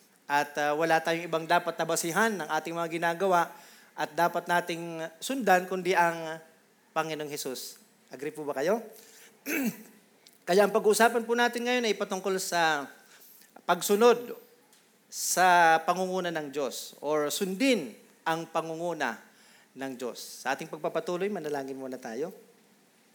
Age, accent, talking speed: 40-59, native, 120 wpm